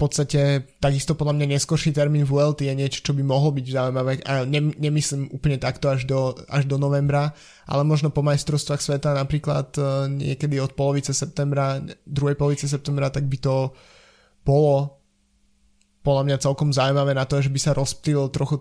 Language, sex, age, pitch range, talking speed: Slovak, male, 20-39, 130-145 Hz, 160 wpm